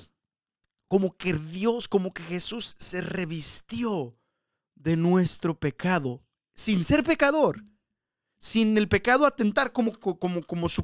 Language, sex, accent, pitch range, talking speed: Spanish, male, Mexican, 150-200 Hz, 115 wpm